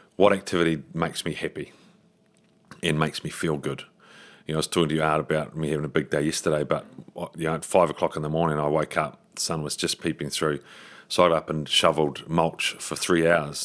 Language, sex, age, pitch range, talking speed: English, male, 30-49, 75-85 Hz, 235 wpm